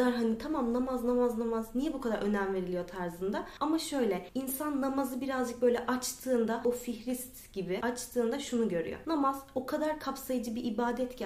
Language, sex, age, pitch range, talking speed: Turkish, female, 30-49, 205-265 Hz, 165 wpm